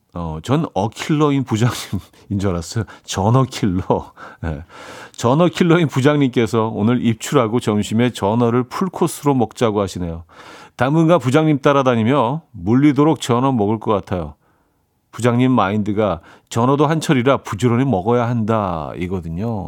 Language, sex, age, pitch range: Korean, male, 40-59, 95-140 Hz